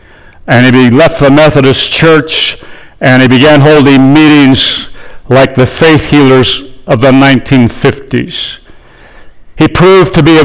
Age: 60-79